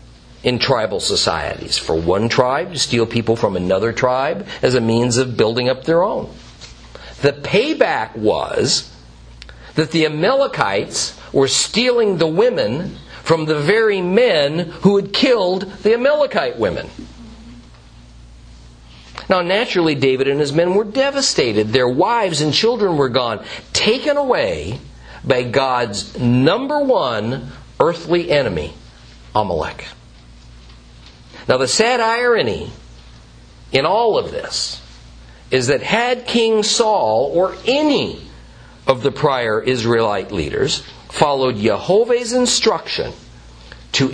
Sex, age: male, 50-69